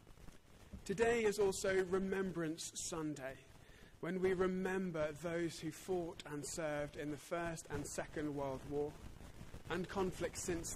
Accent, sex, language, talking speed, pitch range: British, male, English, 130 wpm, 145-185 Hz